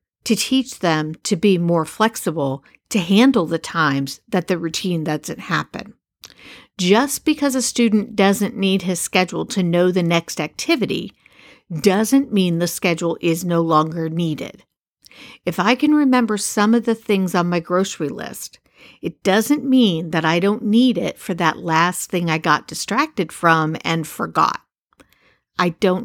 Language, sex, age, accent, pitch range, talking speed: English, female, 50-69, American, 165-225 Hz, 160 wpm